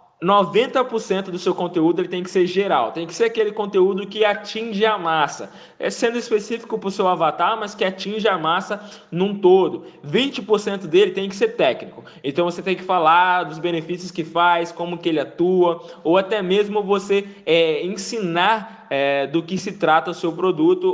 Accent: Brazilian